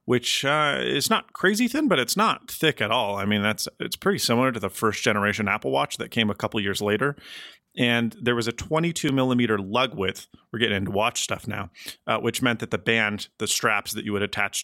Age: 30-49